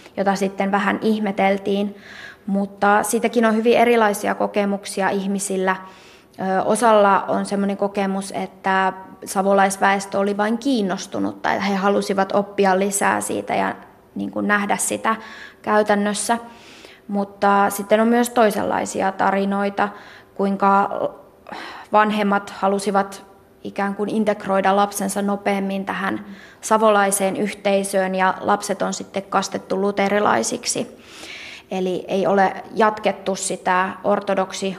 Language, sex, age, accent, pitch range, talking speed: Finnish, female, 20-39, native, 190-205 Hz, 100 wpm